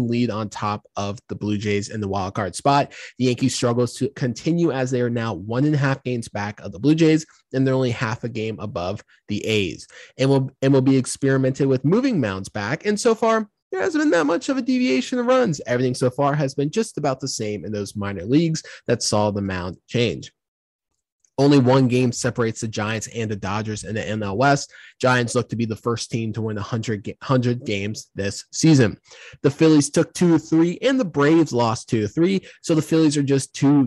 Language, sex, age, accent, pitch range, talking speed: English, male, 20-39, American, 105-140 Hz, 215 wpm